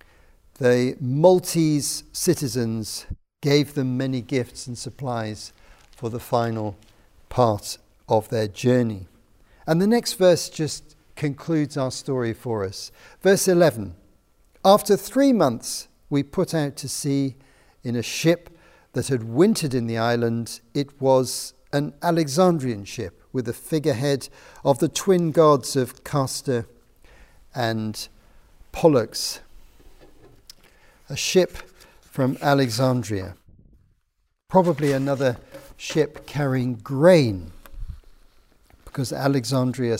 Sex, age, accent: male, 50-69, British